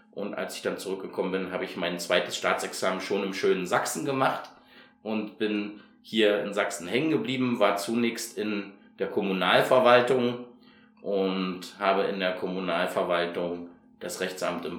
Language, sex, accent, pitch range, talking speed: German, male, German, 95-120 Hz, 145 wpm